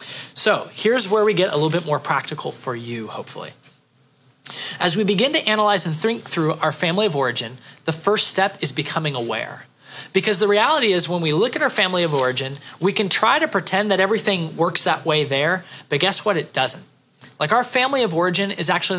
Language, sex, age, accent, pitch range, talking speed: English, male, 20-39, American, 155-205 Hz, 210 wpm